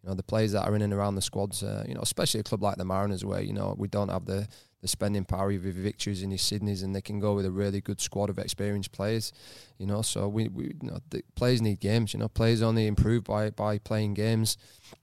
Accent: British